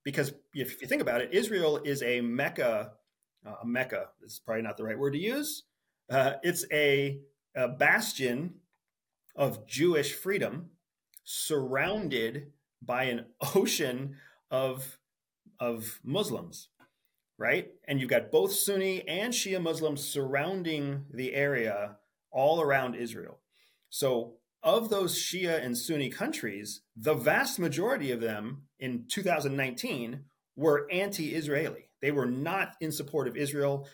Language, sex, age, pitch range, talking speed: English, male, 30-49, 125-160 Hz, 130 wpm